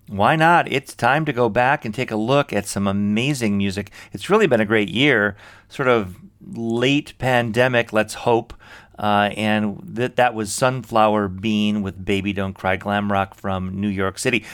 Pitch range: 100-120 Hz